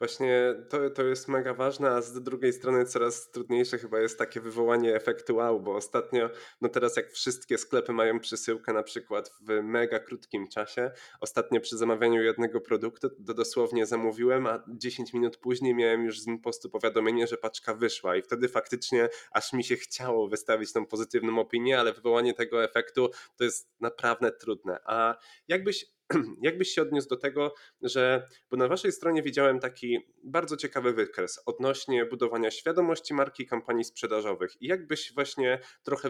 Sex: male